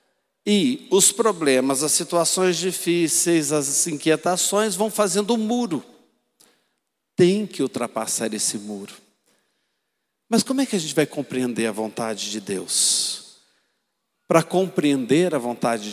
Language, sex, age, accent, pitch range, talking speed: Portuguese, male, 50-69, Brazilian, 145-195 Hz, 125 wpm